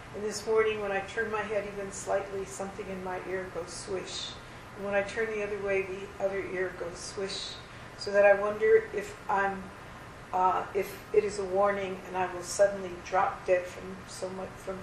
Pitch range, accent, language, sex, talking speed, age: 185-210 Hz, American, English, female, 200 wpm, 50-69